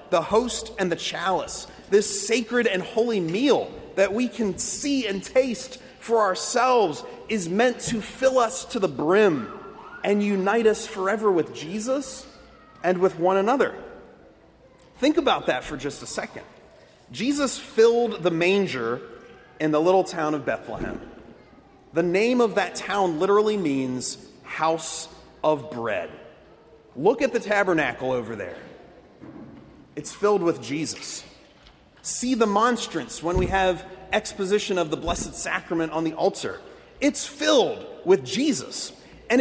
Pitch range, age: 175-255 Hz, 30-49